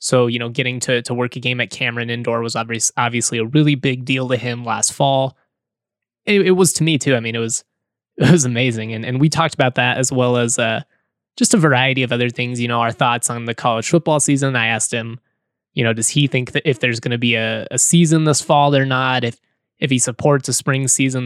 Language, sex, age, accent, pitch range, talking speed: English, male, 20-39, American, 120-145 Hz, 250 wpm